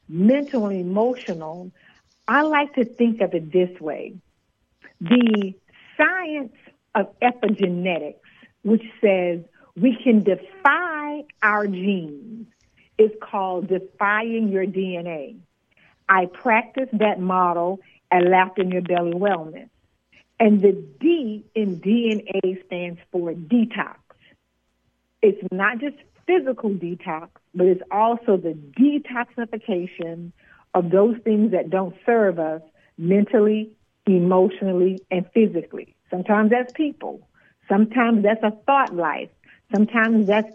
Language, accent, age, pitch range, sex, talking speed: English, American, 60-79, 185-230 Hz, female, 105 wpm